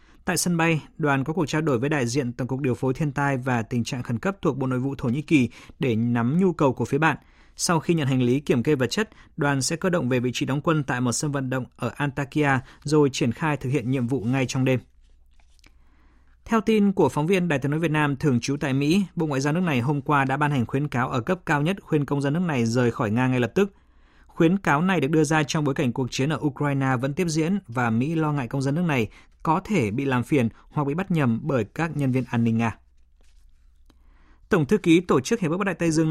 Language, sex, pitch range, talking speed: Vietnamese, male, 125-160 Hz, 270 wpm